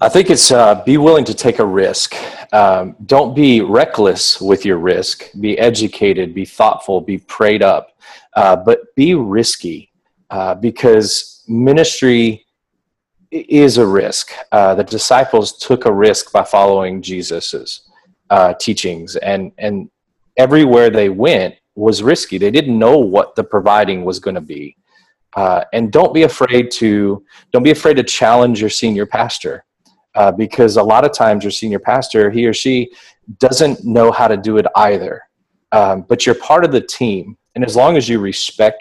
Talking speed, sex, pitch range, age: 165 wpm, male, 100-125 Hz, 30-49